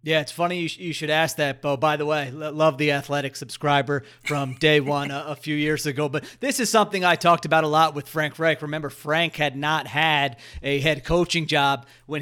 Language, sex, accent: English, male, American